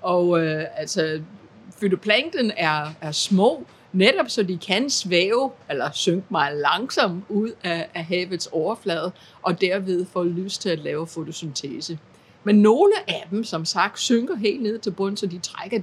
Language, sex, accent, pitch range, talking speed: Danish, female, native, 170-220 Hz, 160 wpm